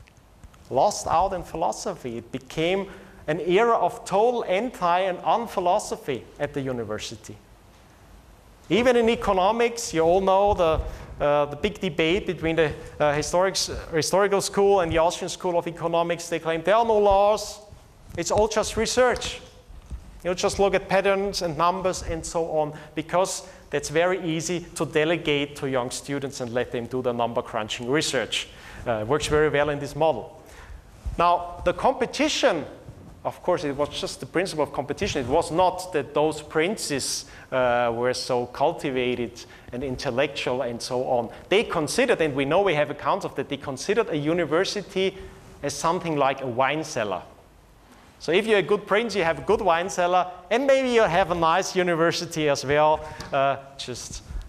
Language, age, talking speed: English, 40-59, 170 wpm